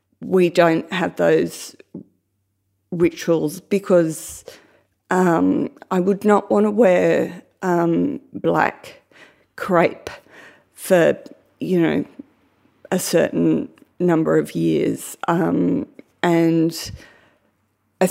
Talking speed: 90 wpm